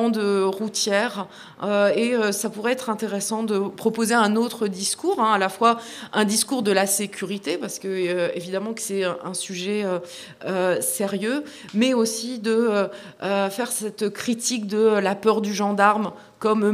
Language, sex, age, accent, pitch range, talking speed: French, female, 30-49, French, 200-240 Hz, 145 wpm